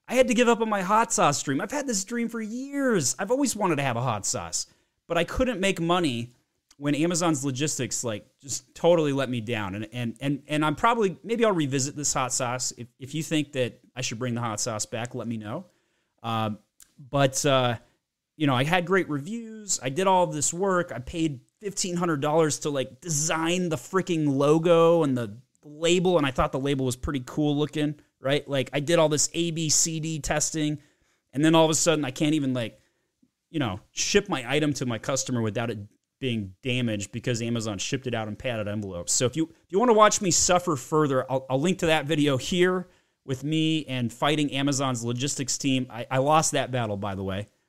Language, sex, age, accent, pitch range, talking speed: English, male, 30-49, American, 125-165 Hz, 220 wpm